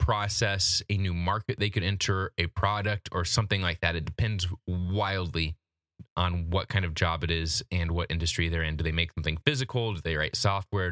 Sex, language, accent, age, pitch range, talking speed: male, English, American, 20-39, 90-110 Hz, 205 wpm